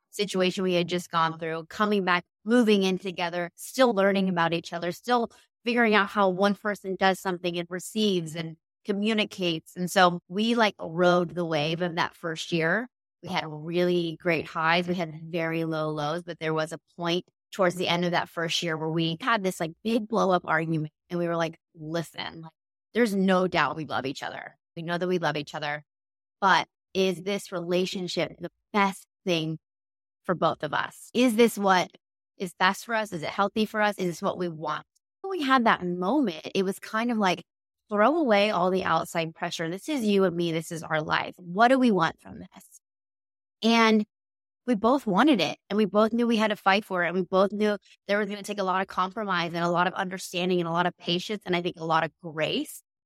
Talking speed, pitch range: 220 wpm, 165-205 Hz